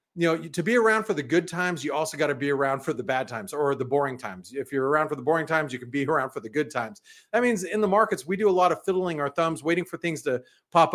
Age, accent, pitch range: 40-59, American, 145-185 Hz